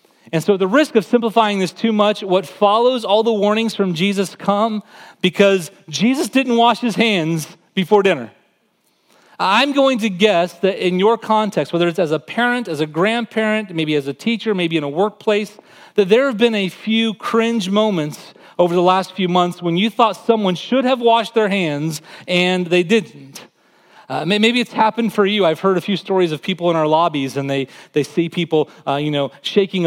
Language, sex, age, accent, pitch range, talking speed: English, male, 30-49, American, 160-215 Hz, 200 wpm